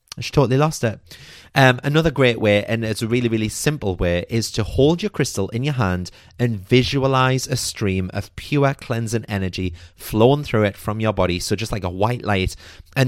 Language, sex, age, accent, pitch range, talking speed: English, male, 30-49, British, 95-130 Hz, 200 wpm